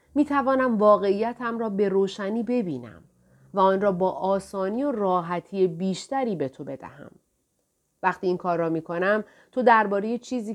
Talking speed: 155 wpm